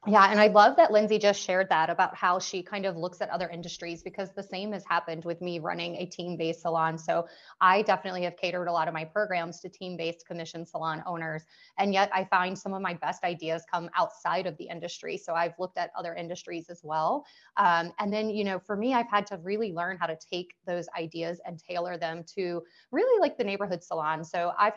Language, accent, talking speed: English, American, 230 wpm